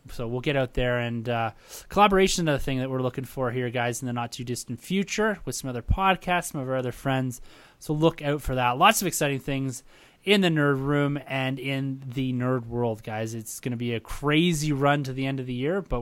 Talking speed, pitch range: 235 wpm, 120-150 Hz